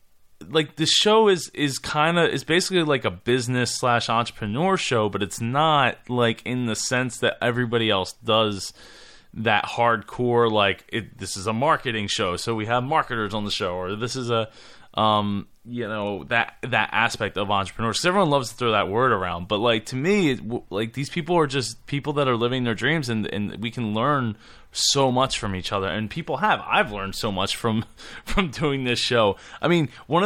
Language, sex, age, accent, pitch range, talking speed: English, male, 20-39, American, 100-130 Hz, 200 wpm